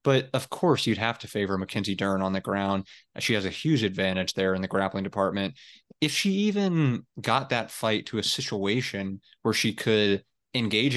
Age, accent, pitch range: 30-49, American, 100-140 Hz